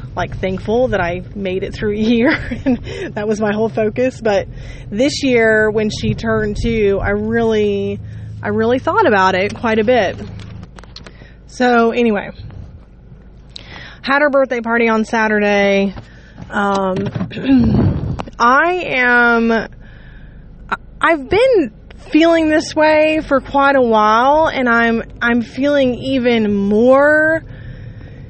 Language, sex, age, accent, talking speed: English, female, 20-39, American, 125 wpm